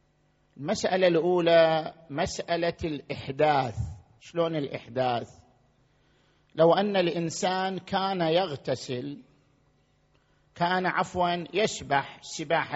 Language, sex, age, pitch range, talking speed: Arabic, male, 50-69, 135-185 Hz, 70 wpm